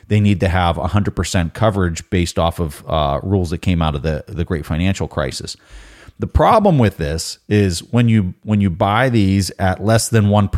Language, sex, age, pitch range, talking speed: English, male, 30-49, 90-110 Hz, 195 wpm